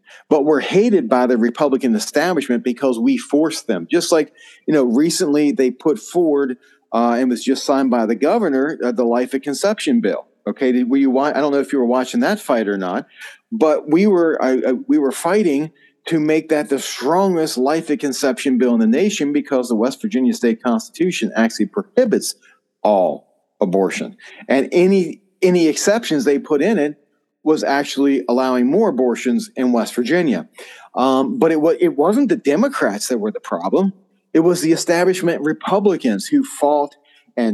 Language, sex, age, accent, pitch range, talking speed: English, male, 40-59, American, 125-175 Hz, 180 wpm